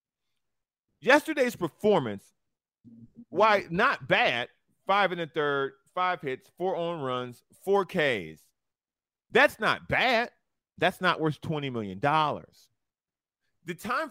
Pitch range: 150-210 Hz